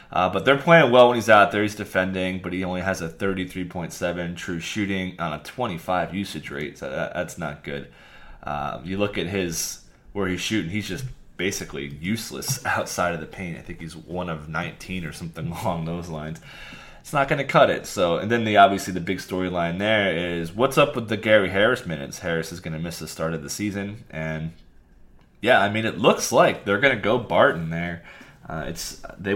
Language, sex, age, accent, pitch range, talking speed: English, male, 20-39, American, 80-100 Hz, 215 wpm